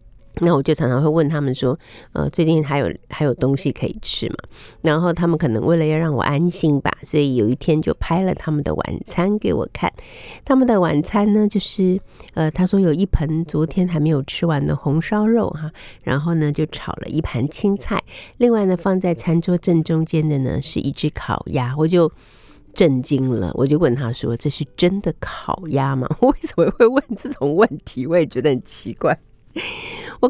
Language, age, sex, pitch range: Chinese, 50-69, female, 150-205 Hz